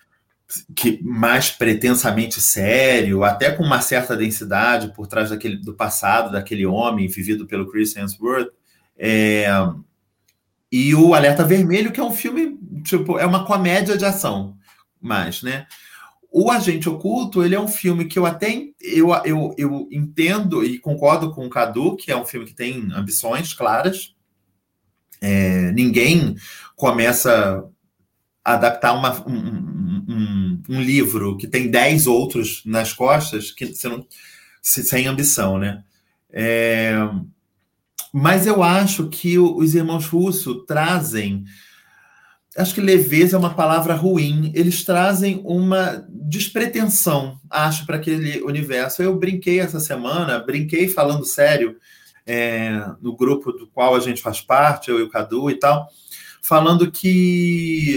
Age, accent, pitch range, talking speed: 30-49, Brazilian, 115-180 Hz, 140 wpm